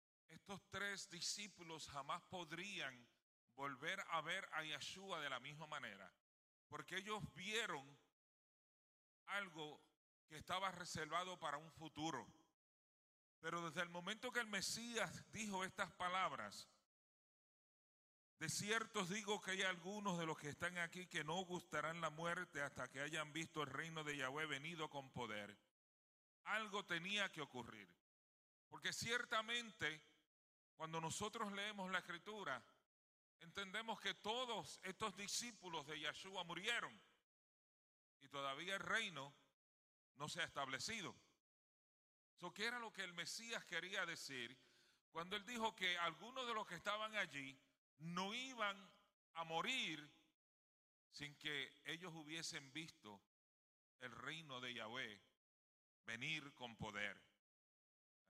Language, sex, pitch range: English, male, 145-195 Hz